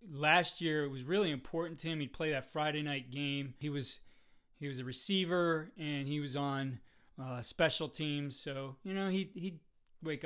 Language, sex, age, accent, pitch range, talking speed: English, male, 30-49, American, 135-160 Hz, 195 wpm